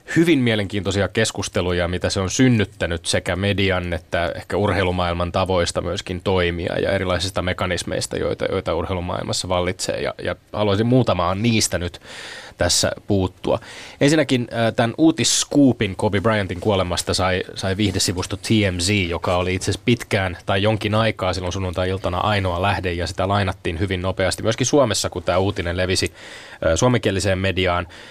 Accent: native